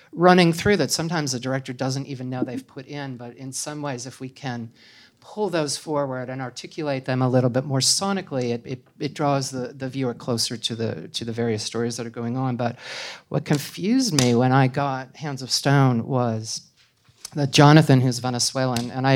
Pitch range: 125-155 Hz